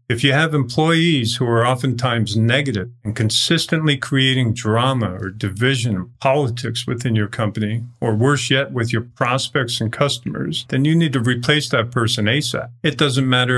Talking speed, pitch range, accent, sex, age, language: 170 wpm, 120-150 Hz, American, male, 50-69, English